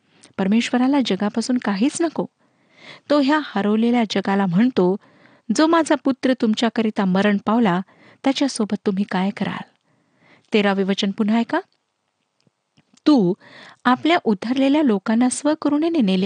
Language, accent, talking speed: Marathi, native, 95 wpm